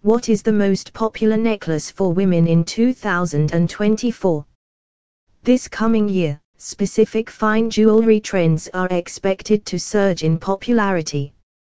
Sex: female